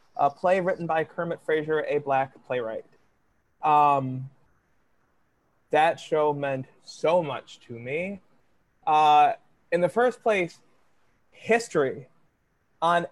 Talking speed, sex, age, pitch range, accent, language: 110 wpm, male, 20-39, 140-175 Hz, American, English